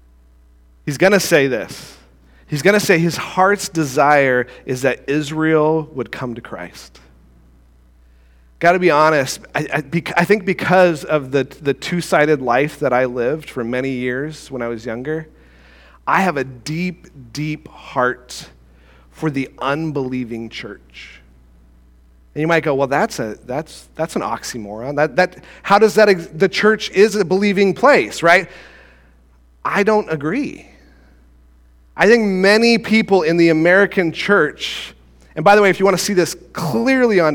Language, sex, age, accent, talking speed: English, male, 40-59, American, 160 wpm